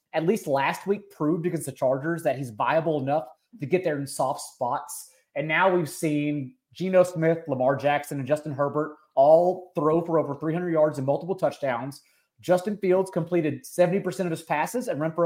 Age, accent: 30-49, American